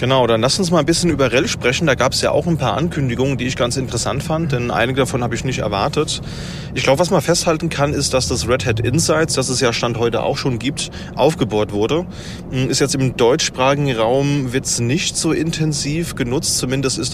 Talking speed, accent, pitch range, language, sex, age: 225 wpm, German, 110-135 Hz, German, male, 30-49